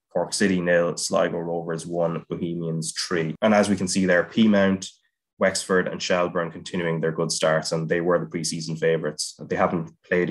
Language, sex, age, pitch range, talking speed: English, male, 20-39, 85-95 Hz, 180 wpm